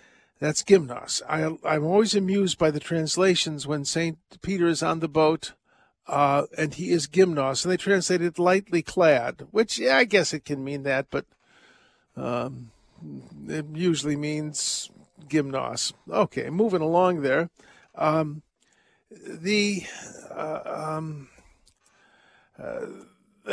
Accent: American